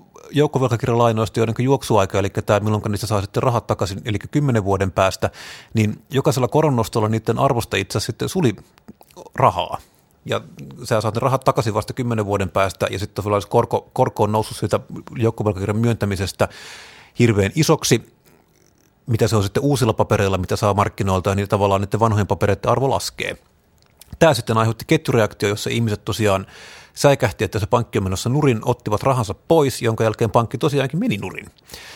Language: Finnish